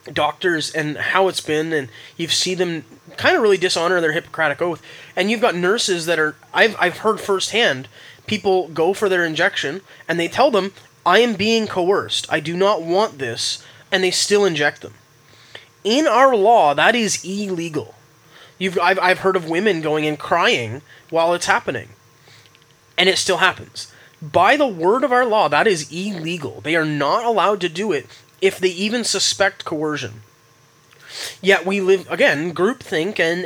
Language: English